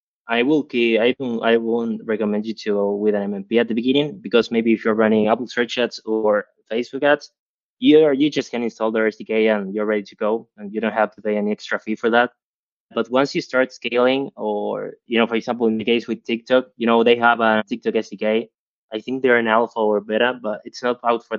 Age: 20-39